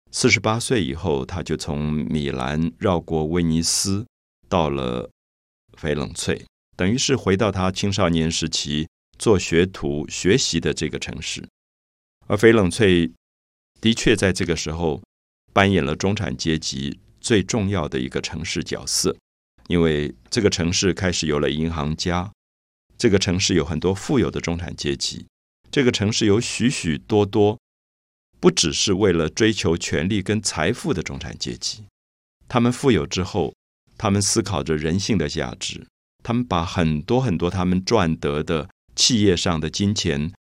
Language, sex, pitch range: Chinese, male, 75-100 Hz